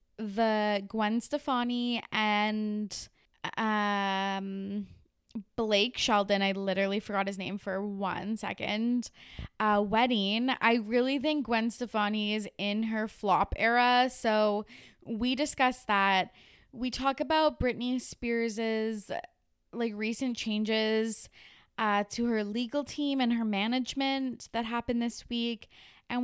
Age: 20-39